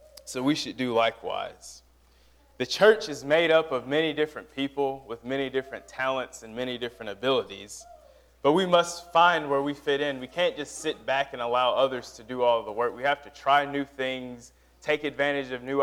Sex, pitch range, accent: male, 125-145 Hz, American